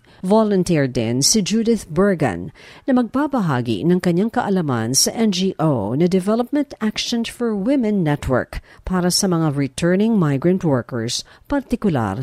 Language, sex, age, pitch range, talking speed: Filipino, female, 50-69, 155-215 Hz, 125 wpm